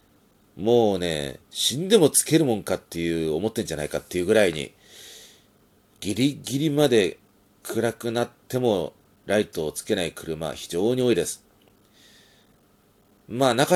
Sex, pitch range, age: male, 80-120 Hz, 40-59